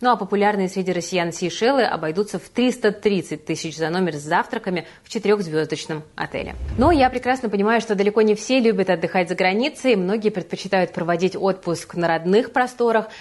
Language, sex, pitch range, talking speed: Russian, female, 170-215 Hz, 165 wpm